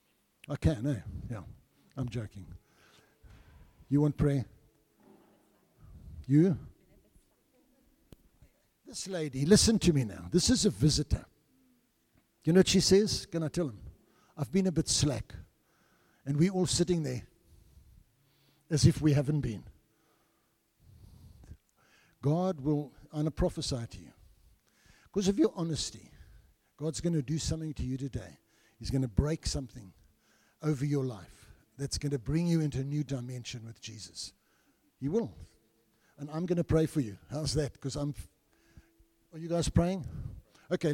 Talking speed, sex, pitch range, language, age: 150 wpm, male, 110-160 Hz, English, 60-79